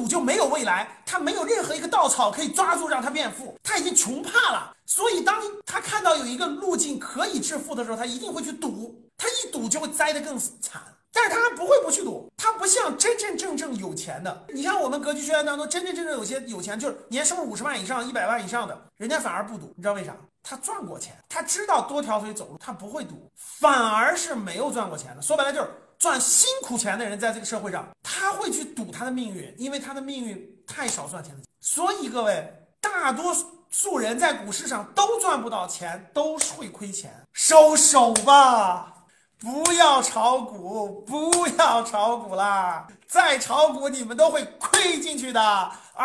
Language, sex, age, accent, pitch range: Chinese, male, 30-49, native, 230-345 Hz